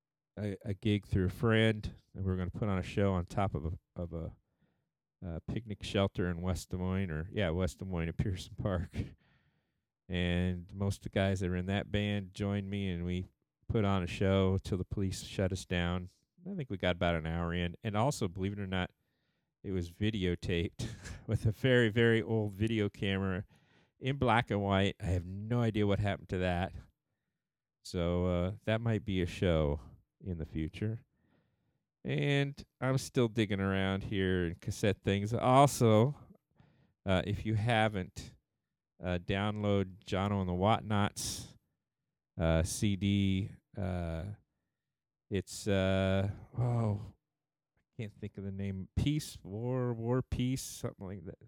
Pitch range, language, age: 95-115 Hz, English, 50-69